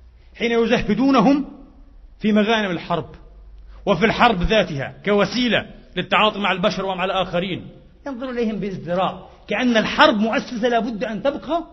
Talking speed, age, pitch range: 120 wpm, 40-59, 180-235 Hz